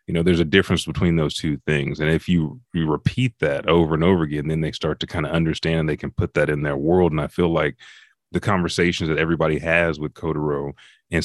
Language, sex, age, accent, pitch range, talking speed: English, male, 30-49, American, 80-90 Hz, 245 wpm